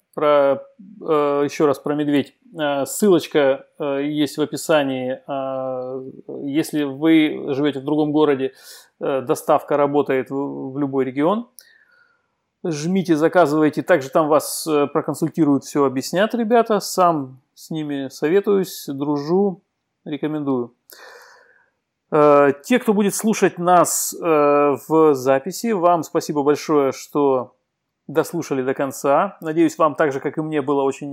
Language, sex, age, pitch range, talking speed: Russian, male, 30-49, 140-165 Hz, 110 wpm